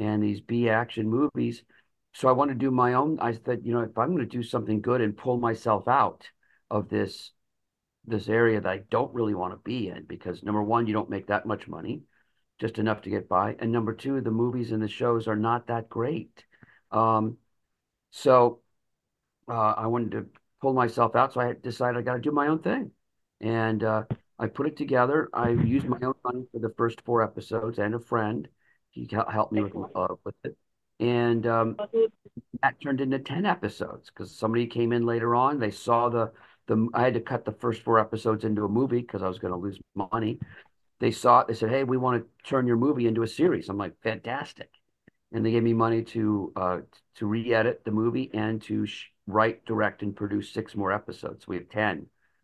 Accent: American